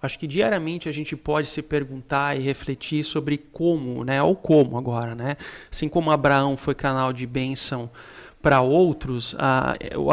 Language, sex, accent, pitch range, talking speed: Portuguese, male, Brazilian, 135-160 Hz, 165 wpm